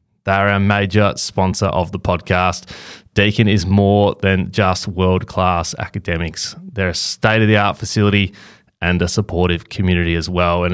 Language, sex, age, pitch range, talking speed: English, male, 20-39, 90-110 Hz, 170 wpm